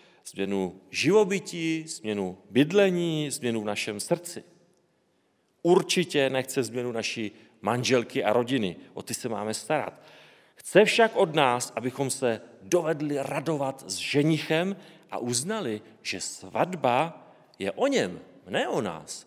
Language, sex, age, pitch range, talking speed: Czech, male, 40-59, 115-170 Hz, 125 wpm